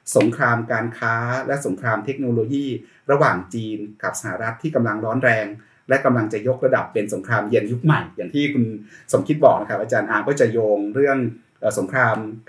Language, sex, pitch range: Thai, male, 115-140 Hz